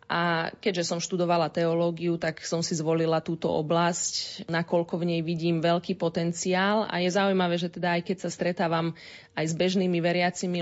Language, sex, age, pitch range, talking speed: Slovak, female, 20-39, 170-200 Hz, 170 wpm